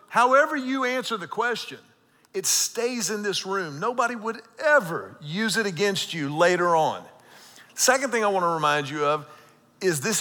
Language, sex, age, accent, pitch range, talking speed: English, male, 50-69, American, 175-235 Hz, 170 wpm